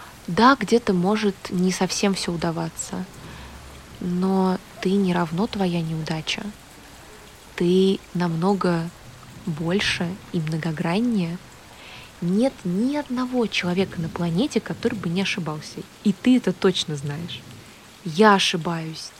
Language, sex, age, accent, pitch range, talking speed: Russian, female, 20-39, native, 175-205 Hz, 110 wpm